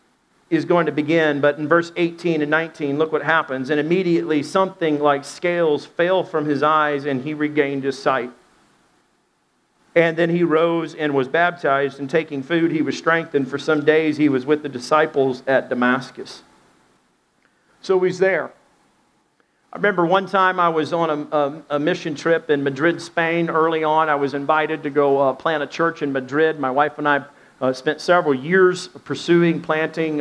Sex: male